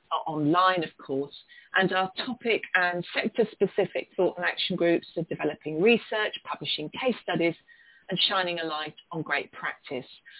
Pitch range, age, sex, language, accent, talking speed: 165-205 Hz, 40-59, female, English, British, 150 wpm